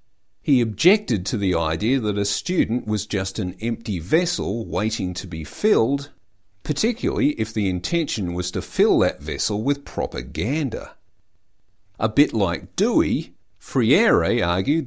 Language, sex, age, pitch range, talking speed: English, male, 50-69, 95-130 Hz, 135 wpm